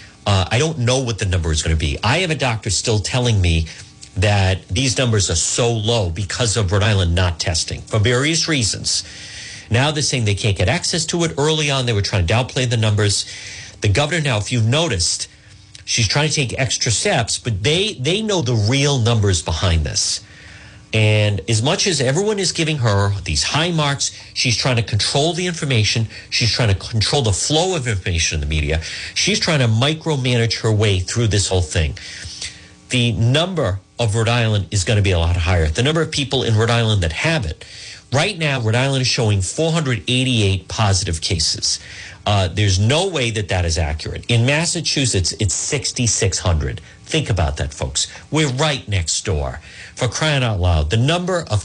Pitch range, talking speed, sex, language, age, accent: 95-130 Hz, 195 wpm, male, English, 50-69, American